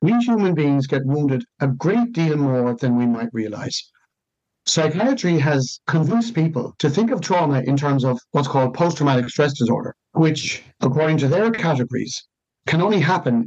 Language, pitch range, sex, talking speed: English, 130-170 Hz, male, 165 wpm